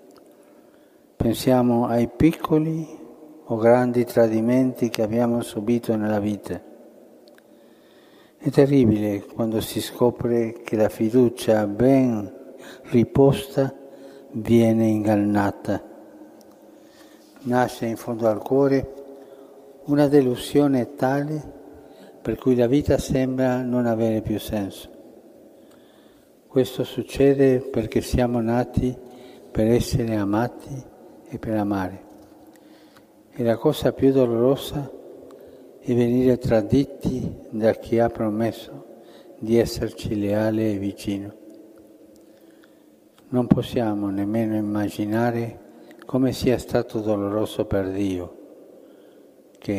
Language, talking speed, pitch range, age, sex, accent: Italian, 95 wpm, 110-130 Hz, 60-79, male, native